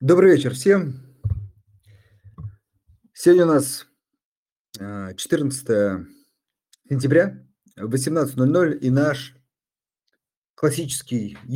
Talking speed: 65 wpm